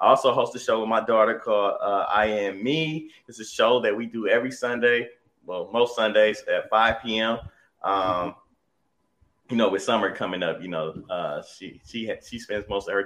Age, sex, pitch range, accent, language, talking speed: 30-49, male, 105-130 Hz, American, English, 205 wpm